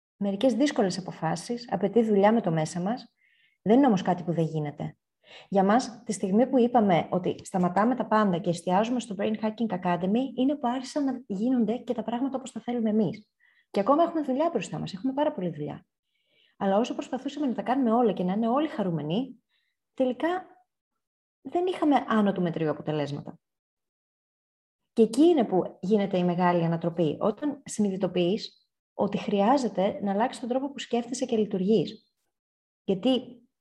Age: 20-39